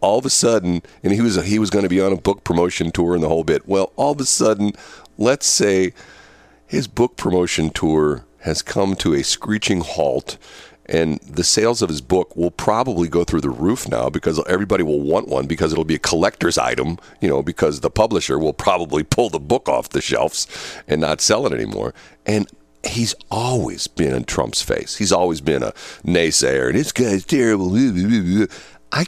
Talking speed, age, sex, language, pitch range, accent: 200 wpm, 50-69, male, English, 80-100 Hz, American